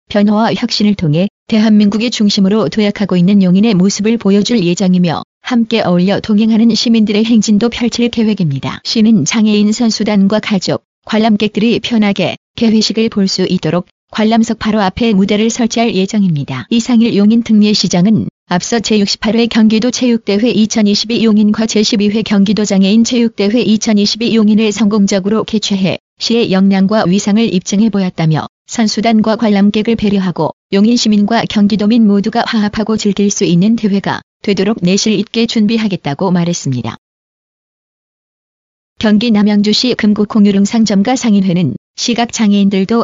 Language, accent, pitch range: Korean, native, 195-225 Hz